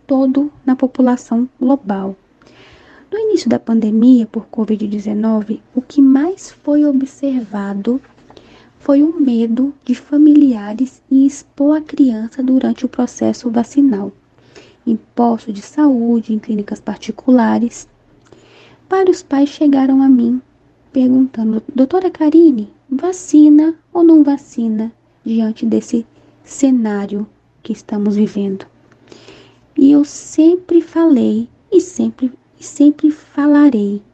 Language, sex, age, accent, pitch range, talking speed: Portuguese, female, 10-29, Brazilian, 220-275 Hz, 105 wpm